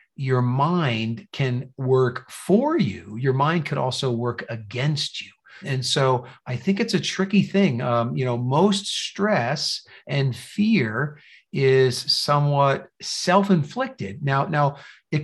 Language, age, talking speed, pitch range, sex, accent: English, 50-69, 135 wpm, 125-160 Hz, male, American